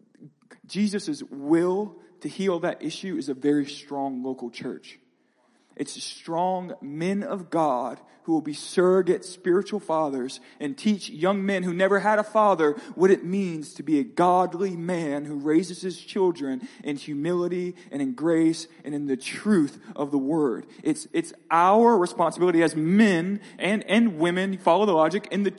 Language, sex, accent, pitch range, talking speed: English, male, American, 150-210 Hz, 165 wpm